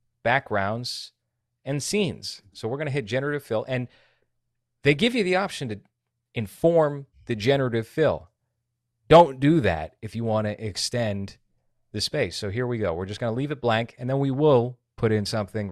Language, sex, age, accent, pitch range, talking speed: English, male, 30-49, American, 105-130 Hz, 185 wpm